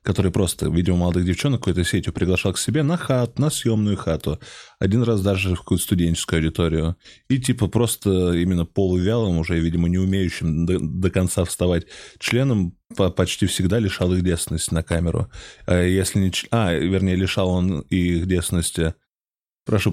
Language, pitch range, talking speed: Russian, 90-120 Hz, 155 wpm